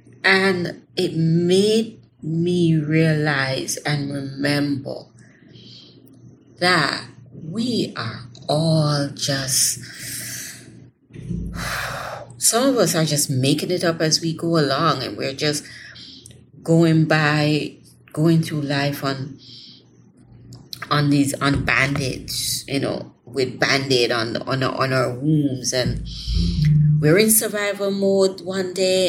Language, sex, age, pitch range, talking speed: English, female, 30-49, 135-170 Hz, 110 wpm